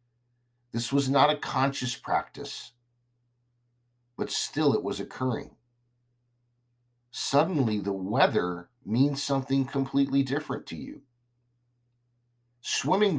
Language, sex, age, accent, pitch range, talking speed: English, male, 50-69, American, 120-130 Hz, 95 wpm